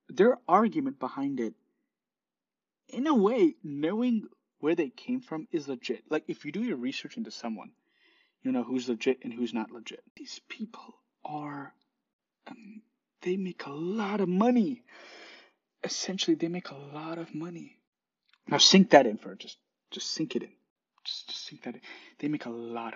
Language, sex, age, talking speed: English, male, 30-49, 175 wpm